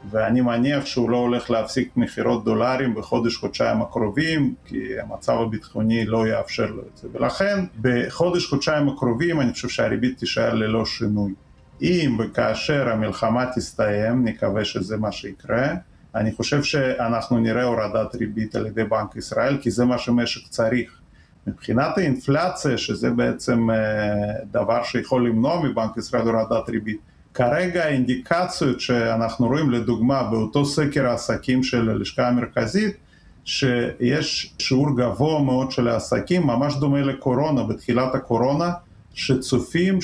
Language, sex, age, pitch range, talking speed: Hebrew, male, 40-59, 115-140 Hz, 130 wpm